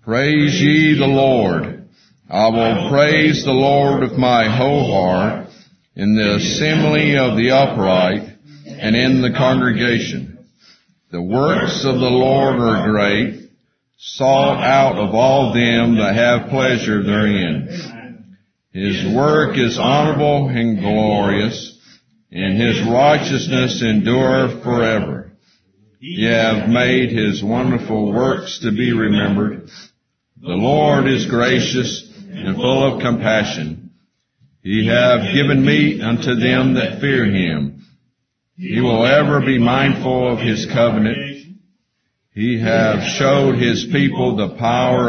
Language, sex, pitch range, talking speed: English, male, 110-135 Hz, 120 wpm